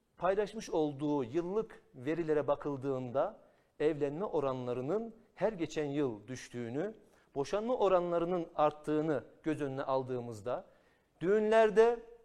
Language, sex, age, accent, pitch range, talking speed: Turkish, male, 50-69, native, 145-195 Hz, 90 wpm